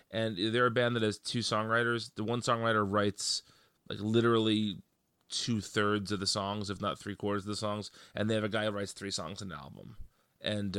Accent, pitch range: American, 95-110 Hz